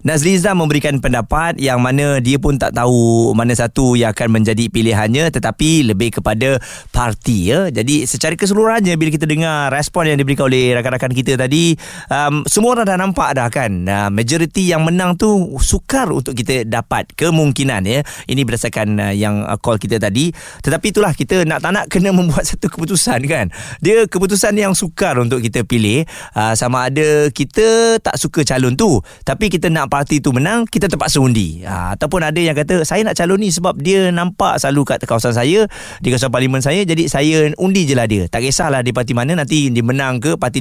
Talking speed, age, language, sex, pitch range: 195 wpm, 20-39, Malay, male, 120-165 Hz